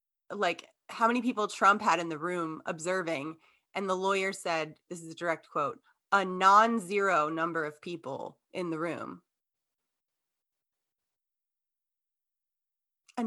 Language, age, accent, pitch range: English, 20-39, American, 160-205 Hz